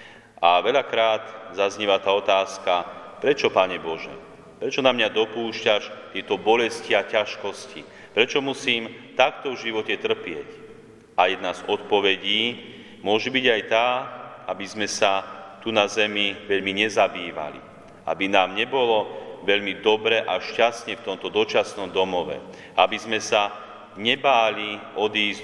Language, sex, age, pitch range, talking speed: Slovak, male, 40-59, 95-115 Hz, 125 wpm